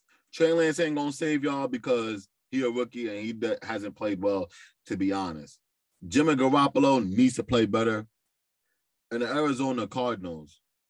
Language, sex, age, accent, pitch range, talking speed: English, male, 20-39, American, 100-155 Hz, 160 wpm